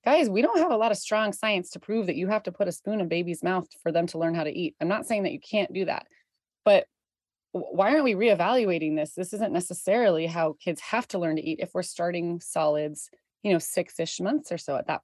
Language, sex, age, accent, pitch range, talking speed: English, female, 30-49, American, 160-200 Hz, 255 wpm